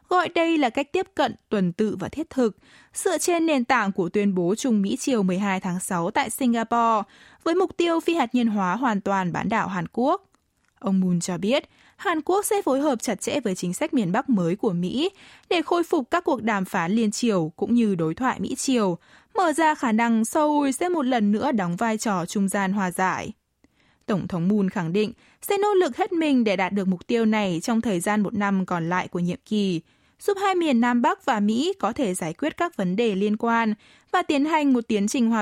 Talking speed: 235 wpm